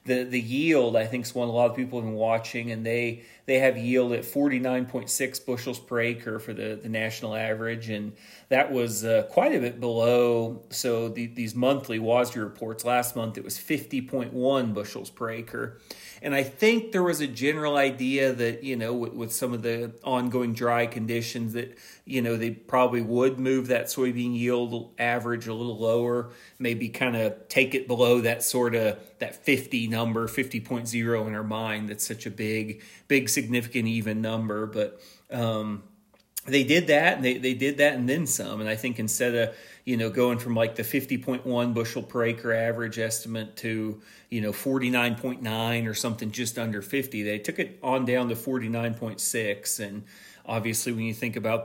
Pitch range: 115-125 Hz